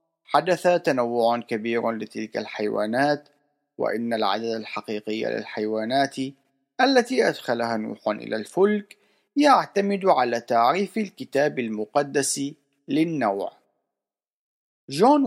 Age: 40-59